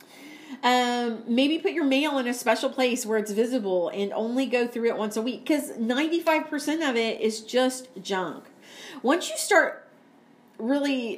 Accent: American